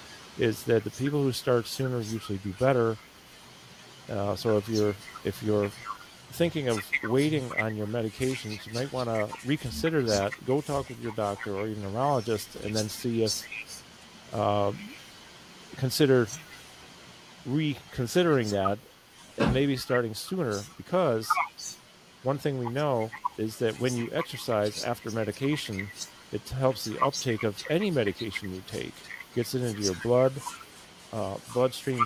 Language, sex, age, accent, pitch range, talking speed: English, male, 40-59, American, 105-130 Hz, 140 wpm